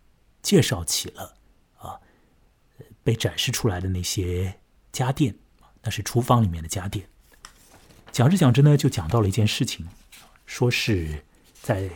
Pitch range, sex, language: 95-125 Hz, male, Chinese